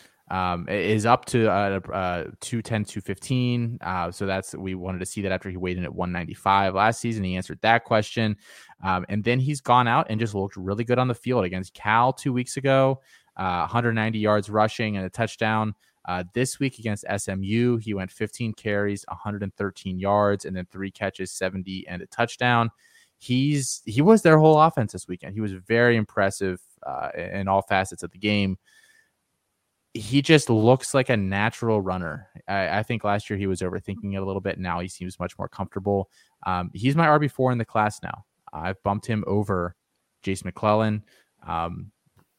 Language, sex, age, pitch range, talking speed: English, male, 20-39, 95-115 Hz, 185 wpm